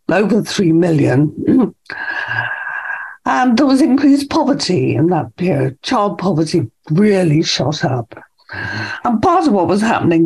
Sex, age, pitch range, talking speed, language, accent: female, 60-79, 165-225 Hz, 130 wpm, English, British